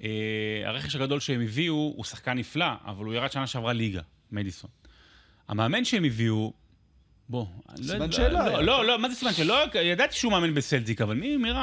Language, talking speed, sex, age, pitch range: Hebrew, 190 wpm, male, 30-49, 105-145 Hz